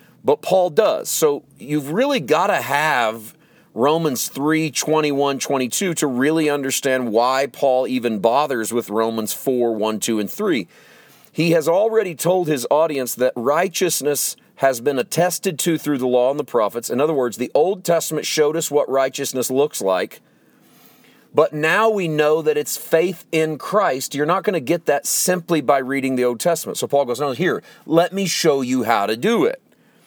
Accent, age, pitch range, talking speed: American, 40-59, 130-175 Hz, 180 wpm